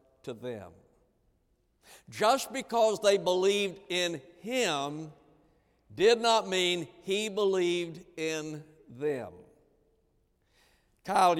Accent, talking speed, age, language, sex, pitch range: American, 80 wpm, 60-79, English, male, 155-190 Hz